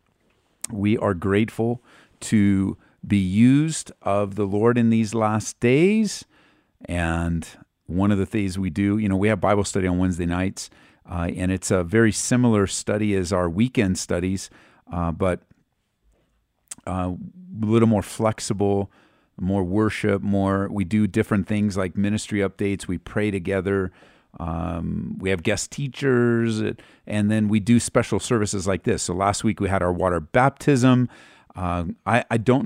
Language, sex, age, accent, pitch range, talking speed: English, male, 50-69, American, 95-115 Hz, 155 wpm